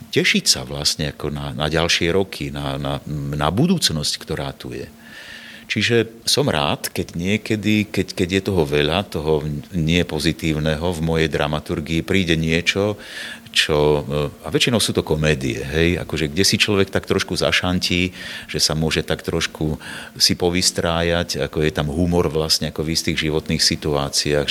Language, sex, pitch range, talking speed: Slovak, male, 75-90 Hz, 155 wpm